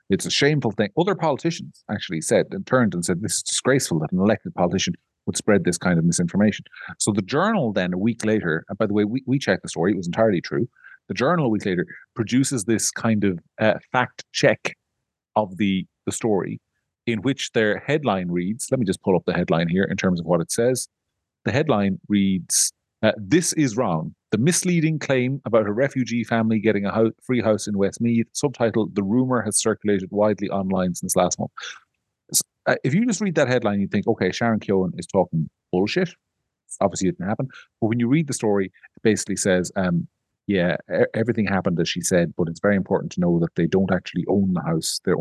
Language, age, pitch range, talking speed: English, 40-59, 95-125 Hz, 215 wpm